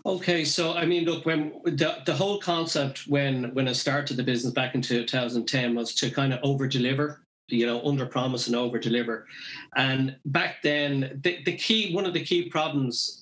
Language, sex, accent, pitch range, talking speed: English, male, Irish, 125-150 Hz, 180 wpm